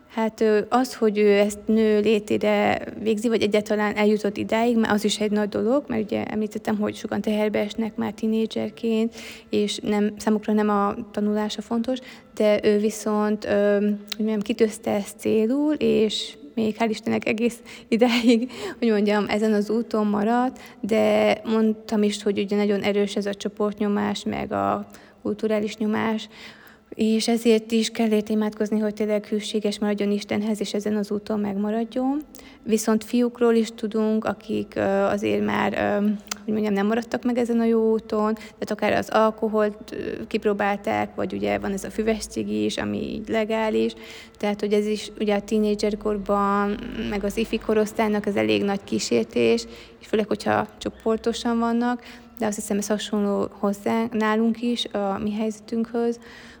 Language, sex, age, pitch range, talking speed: Hungarian, female, 20-39, 205-225 Hz, 145 wpm